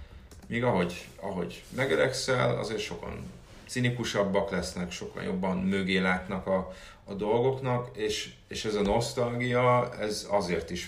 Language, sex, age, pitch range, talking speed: Hungarian, male, 30-49, 85-100 Hz, 130 wpm